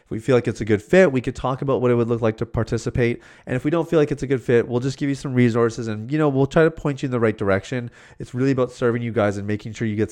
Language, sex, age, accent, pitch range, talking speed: English, male, 30-49, American, 110-135 Hz, 345 wpm